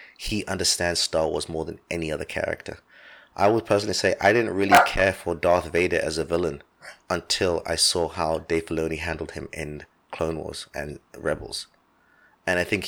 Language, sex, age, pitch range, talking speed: English, male, 30-49, 80-100 Hz, 180 wpm